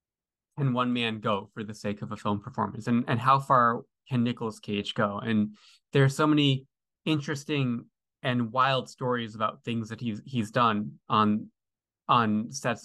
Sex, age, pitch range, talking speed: male, 20-39, 110-130 Hz, 170 wpm